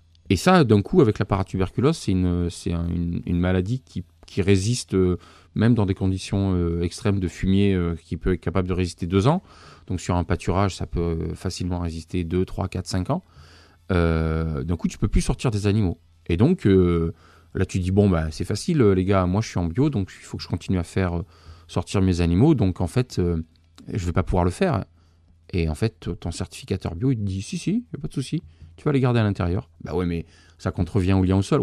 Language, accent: French, French